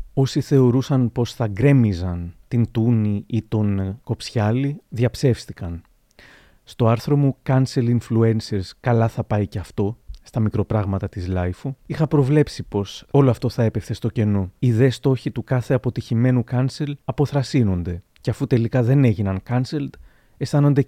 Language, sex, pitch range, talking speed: Greek, male, 110-135 Hz, 140 wpm